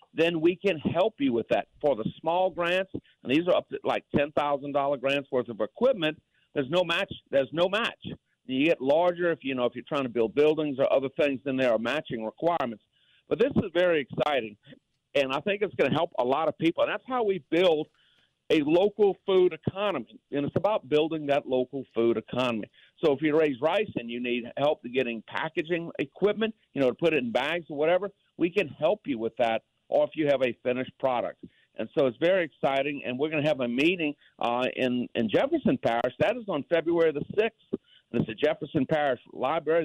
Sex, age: male, 50-69